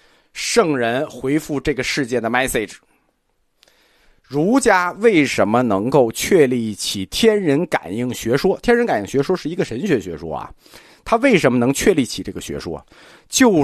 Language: Chinese